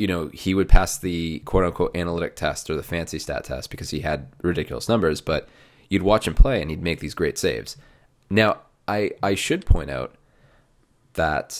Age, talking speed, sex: 20-39, 190 wpm, male